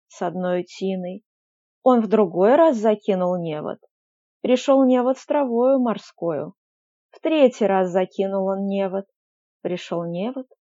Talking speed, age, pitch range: 125 wpm, 20-39, 200-295 Hz